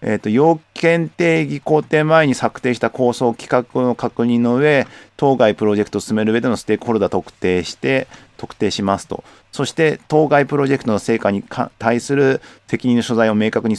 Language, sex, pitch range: Japanese, male, 105-135 Hz